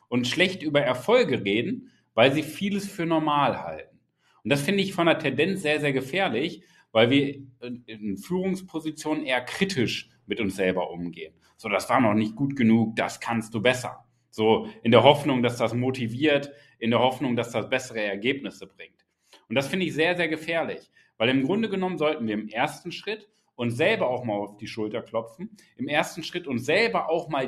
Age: 40-59